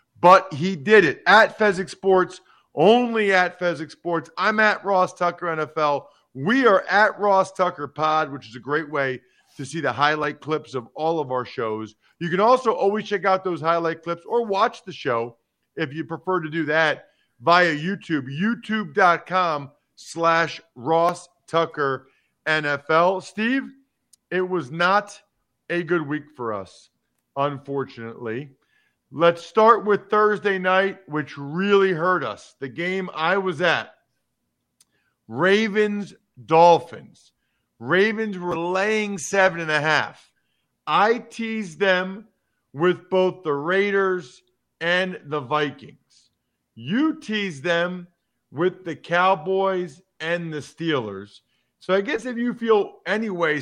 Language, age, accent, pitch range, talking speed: English, 40-59, American, 150-195 Hz, 135 wpm